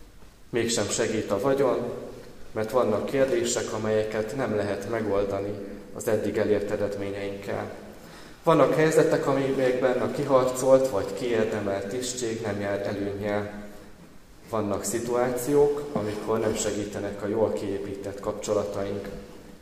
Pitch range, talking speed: 100-120 Hz, 105 wpm